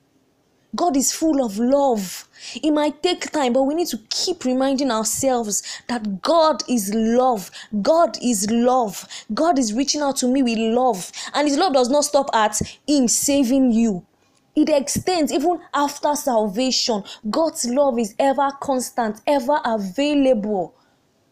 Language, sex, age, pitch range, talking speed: English, female, 20-39, 230-290 Hz, 150 wpm